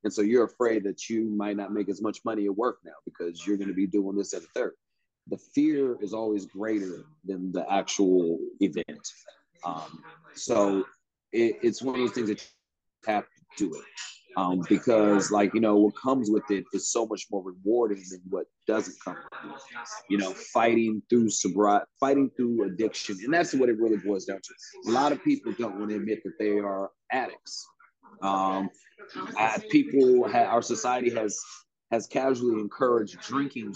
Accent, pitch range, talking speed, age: American, 105-140 Hz, 190 wpm, 30-49